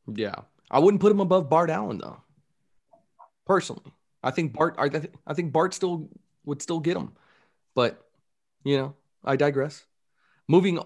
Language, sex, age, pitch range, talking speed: English, male, 30-49, 115-155 Hz, 160 wpm